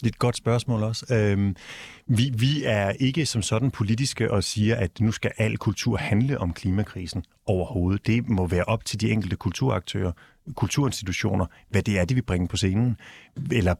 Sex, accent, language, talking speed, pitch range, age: male, native, Danish, 180 wpm, 100-125 Hz, 30-49